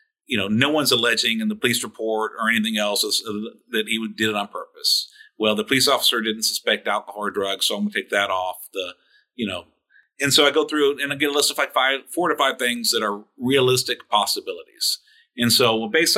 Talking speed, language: 230 wpm, English